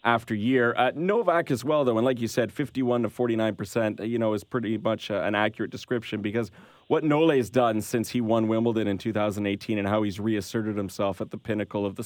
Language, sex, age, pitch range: English, male, 30-49, 105-125 Hz